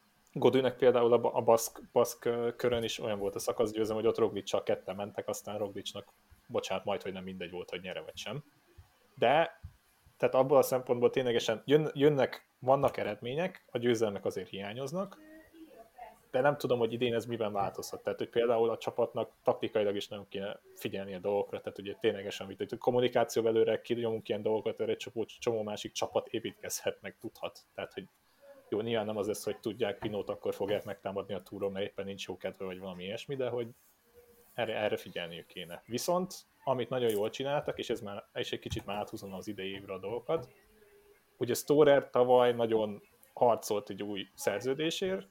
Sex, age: male, 30-49